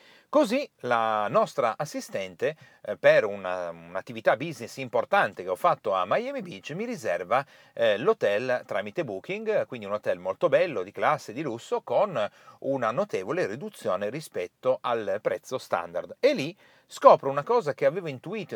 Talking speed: 140 wpm